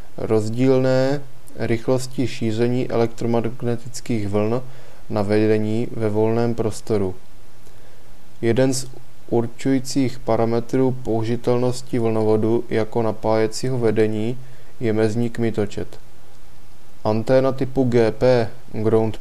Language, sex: Czech, male